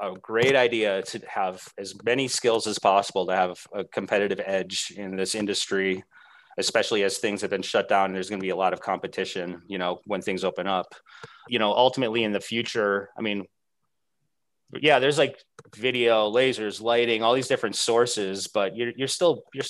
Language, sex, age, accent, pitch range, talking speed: English, male, 30-49, American, 95-120 Hz, 190 wpm